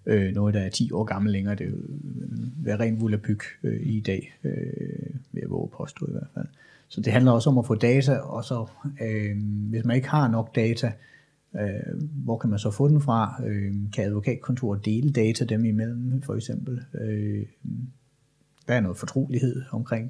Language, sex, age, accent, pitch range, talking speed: Danish, male, 30-49, native, 105-125 Hz, 165 wpm